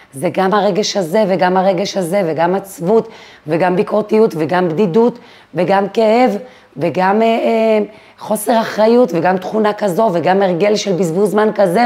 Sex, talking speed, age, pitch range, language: female, 145 wpm, 30-49, 170-210 Hz, Hebrew